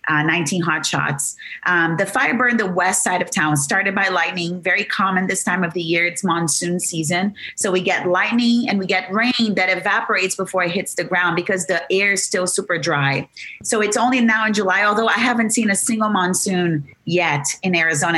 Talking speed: 210 wpm